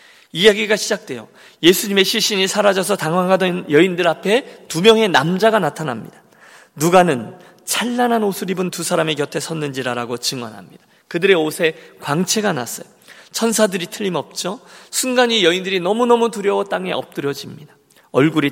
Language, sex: Korean, male